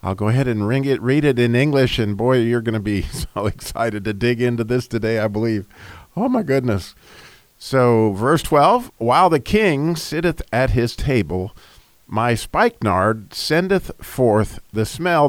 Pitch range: 105-130 Hz